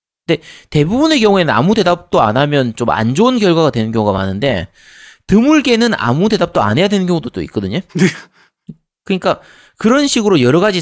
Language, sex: Korean, male